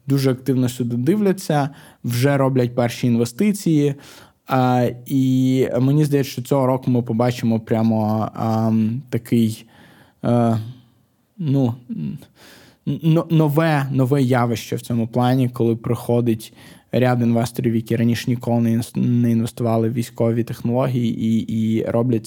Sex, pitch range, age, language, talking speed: male, 120-135 Hz, 20-39, Ukrainian, 105 wpm